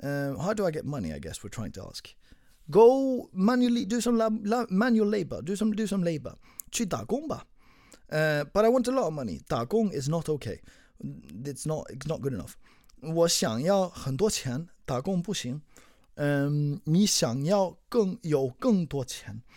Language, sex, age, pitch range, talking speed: English, male, 30-49, 135-190 Hz, 135 wpm